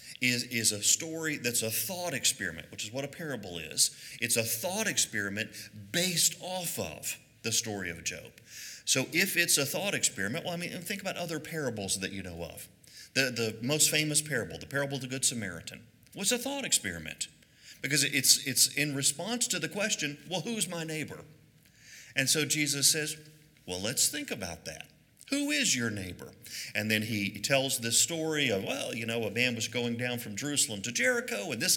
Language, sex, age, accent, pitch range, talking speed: English, male, 40-59, American, 120-175 Hz, 195 wpm